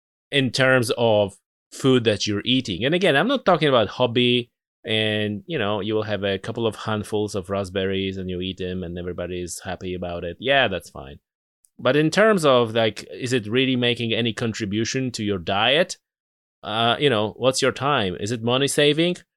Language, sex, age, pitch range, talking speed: English, male, 30-49, 105-140 Hz, 190 wpm